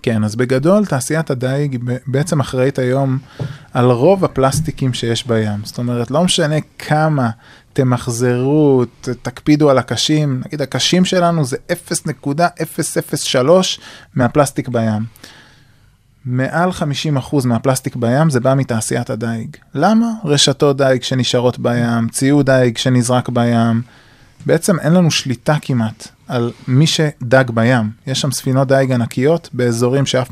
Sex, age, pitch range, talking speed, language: male, 20-39, 125-155 Hz, 125 wpm, Hebrew